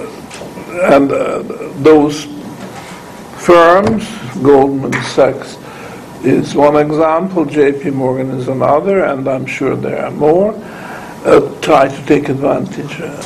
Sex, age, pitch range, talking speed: male, 60-79, 130-165 Hz, 110 wpm